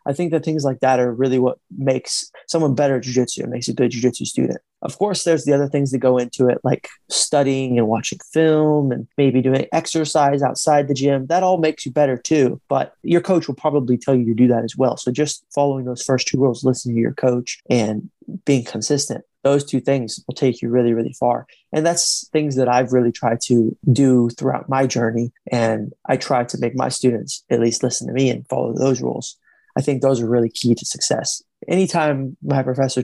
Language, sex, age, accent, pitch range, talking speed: English, male, 20-39, American, 125-145 Hz, 220 wpm